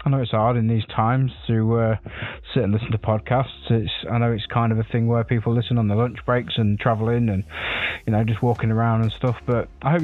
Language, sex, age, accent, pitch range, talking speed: English, male, 20-39, British, 110-125 Hz, 250 wpm